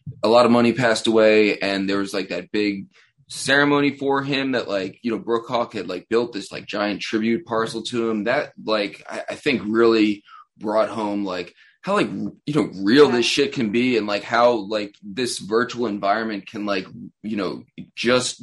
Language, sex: English, male